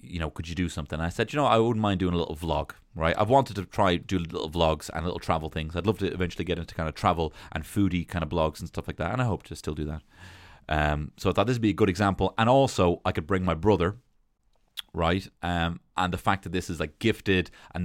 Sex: male